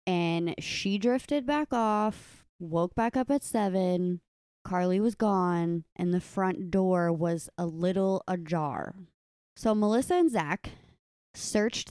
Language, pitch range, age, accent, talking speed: English, 175-220 Hz, 20-39, American, 130 wpm